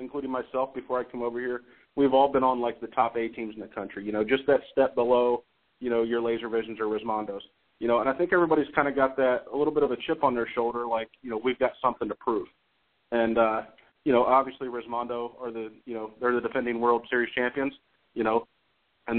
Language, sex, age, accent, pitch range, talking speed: English, male, 30-49, American, 115-130 Hz, 245 wpm